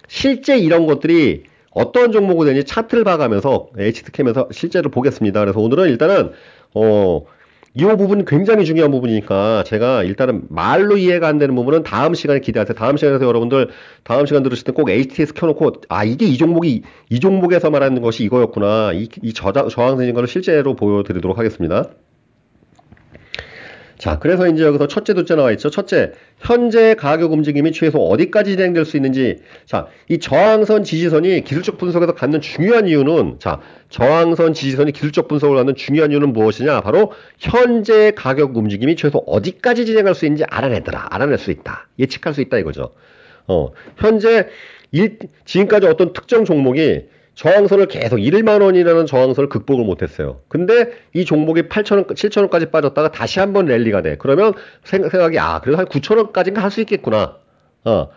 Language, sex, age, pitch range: Korean, male, 40-59, 135-200 Hz